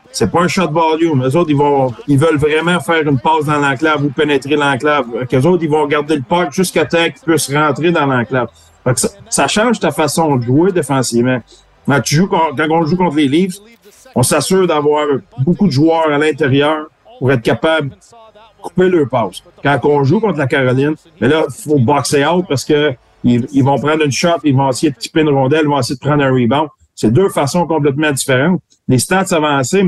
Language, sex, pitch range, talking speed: French, male, 135-165 Hz, 210 wpm